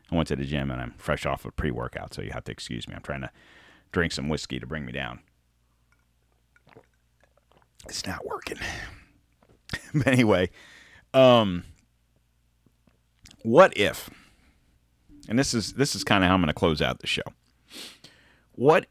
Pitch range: 65-100 Hz